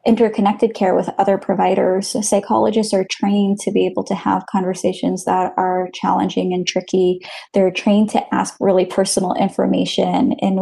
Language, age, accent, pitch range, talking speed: English, 10-29, American, 180-200 Hz, 155 wpm